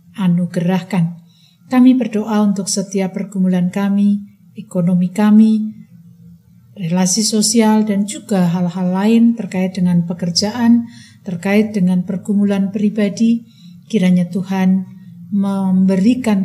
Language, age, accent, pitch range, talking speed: Indonesian, 50-69, native, 185-215 Hz, 90 wpm